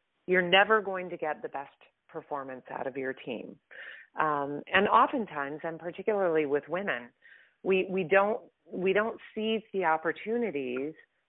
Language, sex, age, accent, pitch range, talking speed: English, female, 40-59, American, 150-190 Hz, 140 wpm